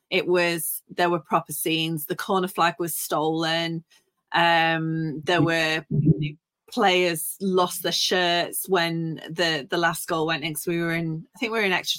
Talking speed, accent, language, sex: 175 wpm, British, English, female